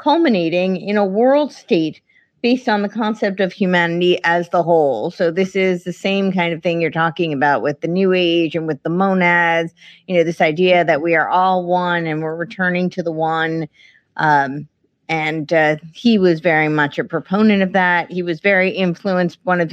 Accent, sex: American, female